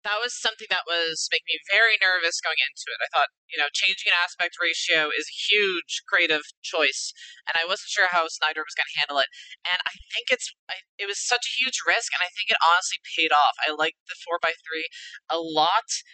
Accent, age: American, 20-39